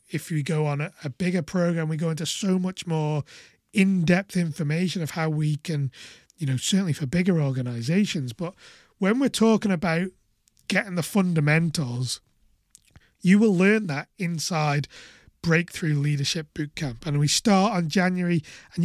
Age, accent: 30-49, British